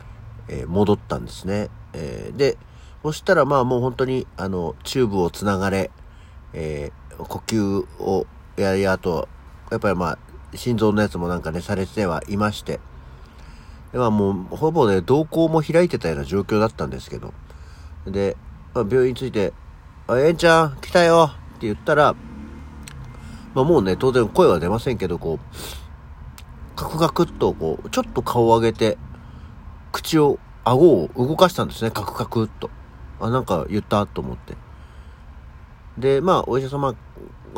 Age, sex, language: 50-69, male, Japanese